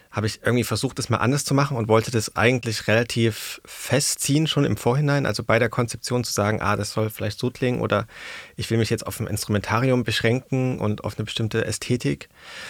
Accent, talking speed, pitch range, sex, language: German, 210 wpm, 110-125 Hz, male, German